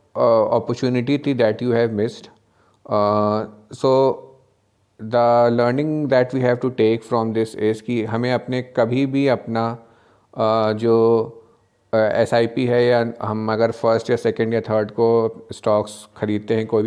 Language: Hindi